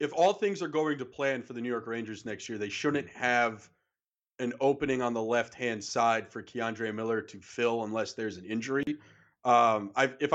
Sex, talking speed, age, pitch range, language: male, 205 wpm, 40-59, 120-145 Hz, English